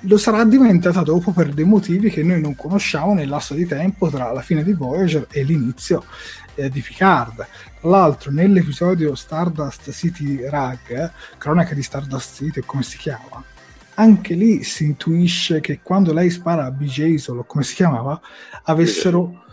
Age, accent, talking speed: 30-49, native, 165 wpm